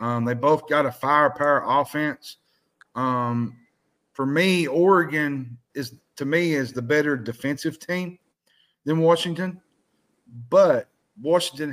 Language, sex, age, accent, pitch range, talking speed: English, male, 50-69, American, 125-155 Hz, 120 wpm